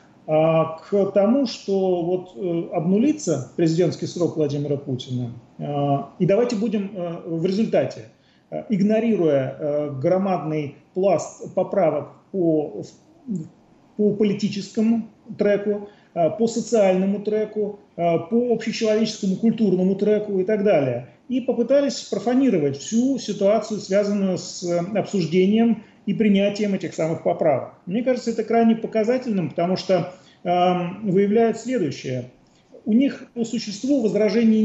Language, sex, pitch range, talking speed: Russian, male, 160-215 Hz, 105 wpm